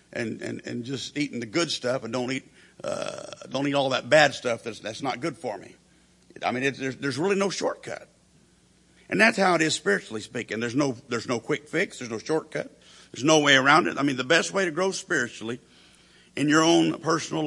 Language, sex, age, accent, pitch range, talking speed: English, male, 50-69, American, 120-155 Hz, 225 wpm